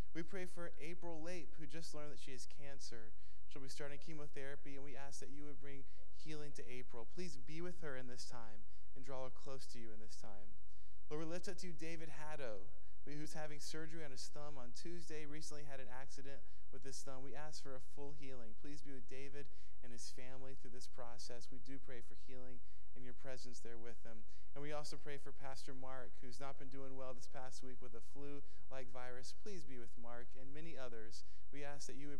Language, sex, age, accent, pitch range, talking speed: English, male, 20-39, American, 115-145 Hz, 230 wpm